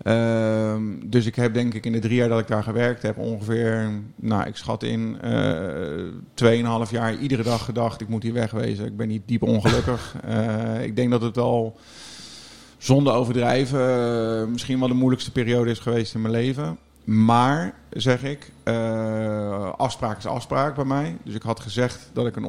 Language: Dutch